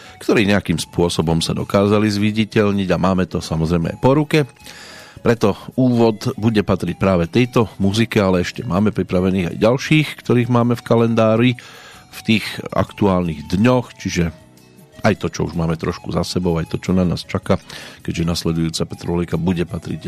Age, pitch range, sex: 40-59, 85-115 Hz, male